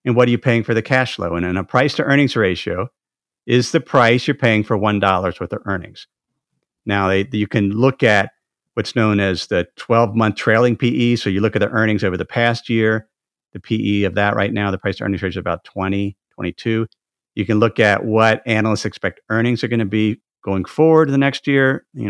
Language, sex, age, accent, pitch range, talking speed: English, male, 50-69, American, 95-115 Hz, 215 wpm